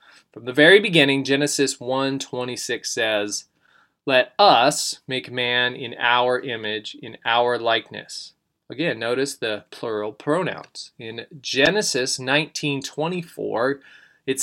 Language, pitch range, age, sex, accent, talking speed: English, 120-155 Hz, 20-39, male, American, 110 wpm